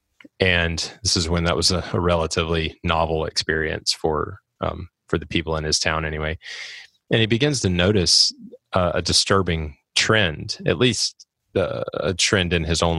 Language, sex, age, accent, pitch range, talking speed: English, male, 30-49, American, 85-100 Hz, 170 wpm